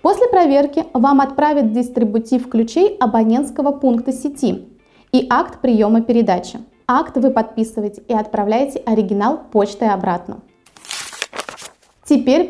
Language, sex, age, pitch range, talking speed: Russian, female, 20-39, 230-295 Hz, 105 wpm